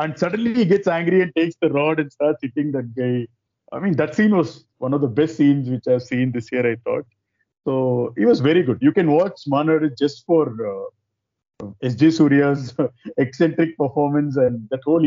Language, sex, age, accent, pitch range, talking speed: English, male, 50-69, Indian, 120-155 Hz, 200 wpm